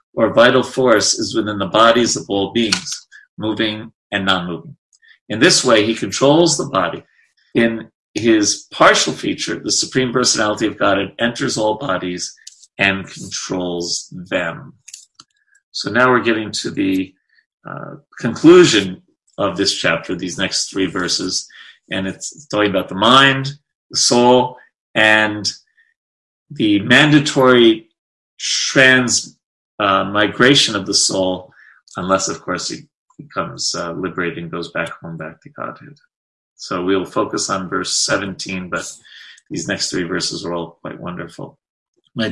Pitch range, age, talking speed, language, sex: 95-135 Hz, 40-59, 140 wpm, English, male